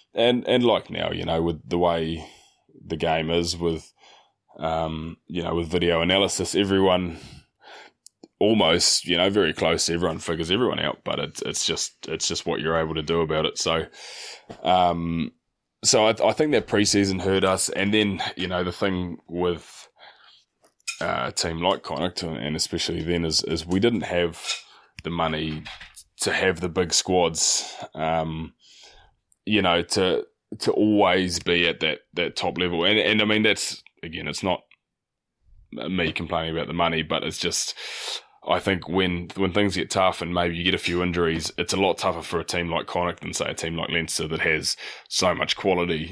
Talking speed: 180 wpm